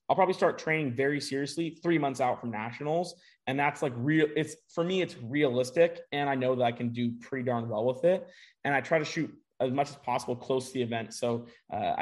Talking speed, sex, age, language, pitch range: 235 wpm, male, 20-39, English, 120-150 Hz